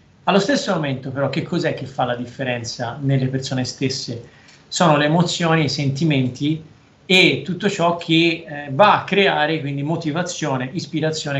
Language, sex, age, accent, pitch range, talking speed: Italian, male, 40-59, native, 135-170 Hz, 155 wpm